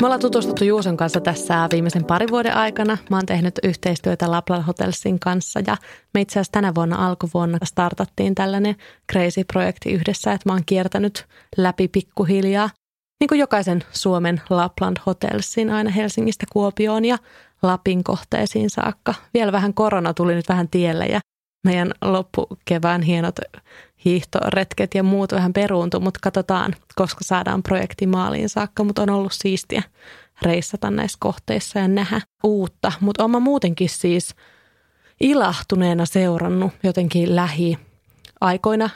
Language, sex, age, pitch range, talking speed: Finnish, female, 20-39, 175-205 Hz, 135 wpm